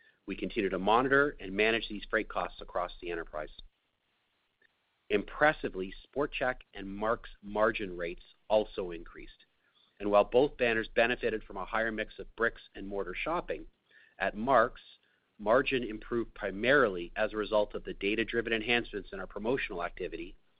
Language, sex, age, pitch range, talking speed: English, male, 40-59, 105-130 Hz, 145 wpm